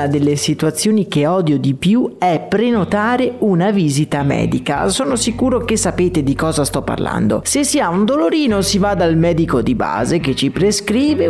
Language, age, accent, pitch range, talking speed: Italian, 30-49, native, 150-215 Hz, 175 wpm